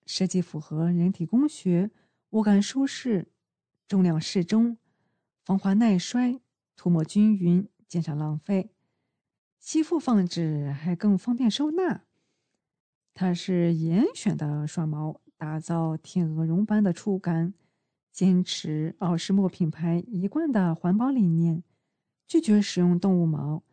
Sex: female